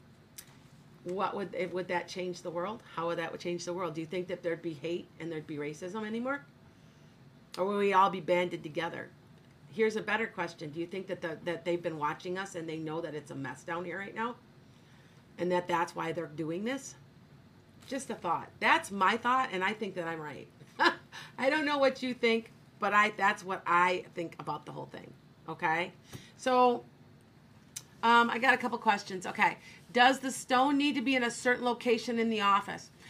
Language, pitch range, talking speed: English, 165-225 Hz, 205 wpm